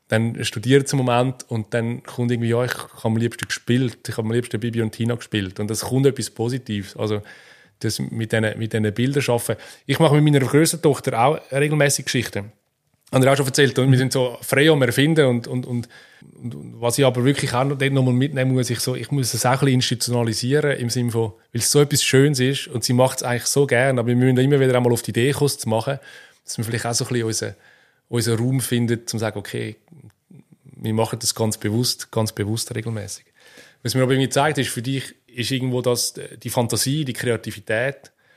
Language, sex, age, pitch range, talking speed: German, male, 20-39, 115-135 Hz, 230 wpm